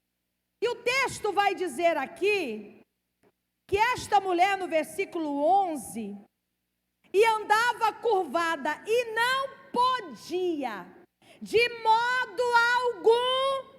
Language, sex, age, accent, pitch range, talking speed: Portuguese, female, 40-59, Brazilian, 300-405 Hz, 90 wpm